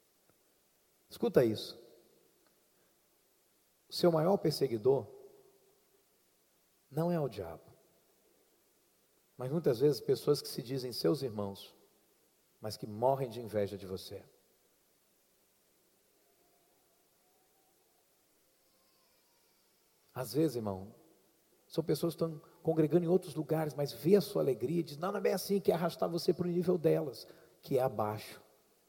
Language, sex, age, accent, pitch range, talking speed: Portuguese, male, 40-59, Brazilian, 140-210 Hz, 125 wpm